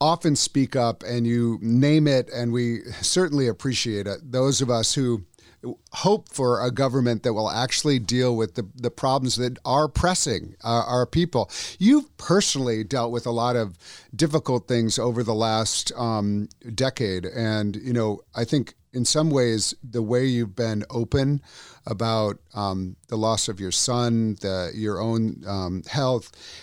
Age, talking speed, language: 50-69, 165 wpm, English